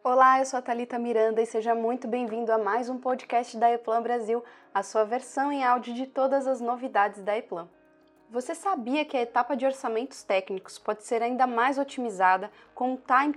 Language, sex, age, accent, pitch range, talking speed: Portuguese, female, 20-39, Brazilian, 220-265 Hz, 200 wpm